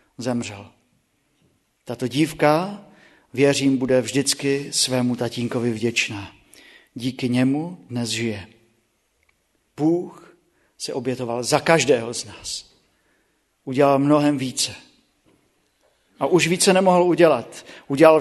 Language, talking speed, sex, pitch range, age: Czech, 95 wpm, male, 125-170 Hz, 50-69